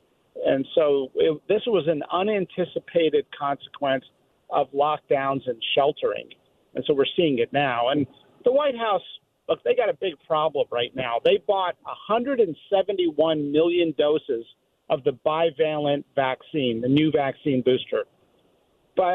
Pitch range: 140-205 Hz